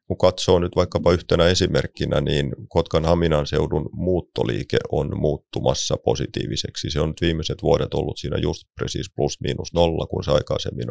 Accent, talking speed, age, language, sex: Finnish, 145 wpm, 30-49, English, male